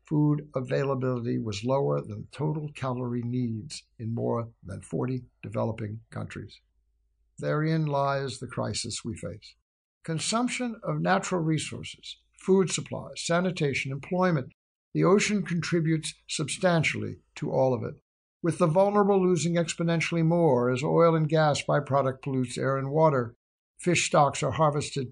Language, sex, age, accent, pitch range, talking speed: English, male, 60-79, American, 125-165 Hz, 130 wpm